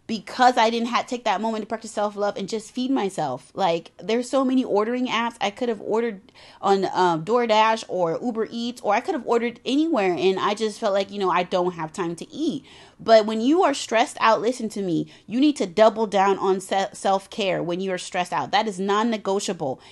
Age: 30-49